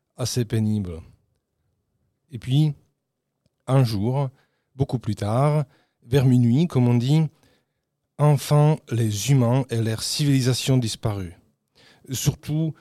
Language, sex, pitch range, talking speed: French, male, 115-140 Hz, 105 wpm